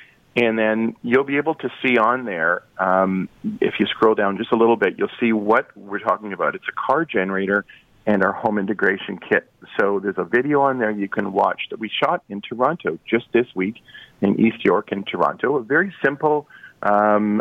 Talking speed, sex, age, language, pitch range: 205 wpm, male, 40-59, English, 100-115 Hz